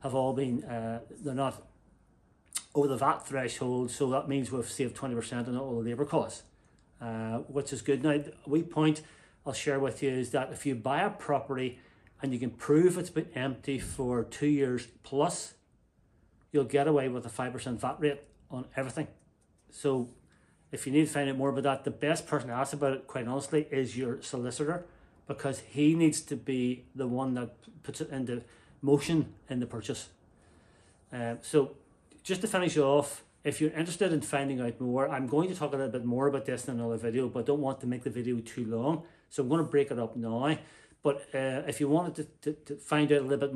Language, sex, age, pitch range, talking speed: English, male, 40-59, 125-145 Hz, 215 wpm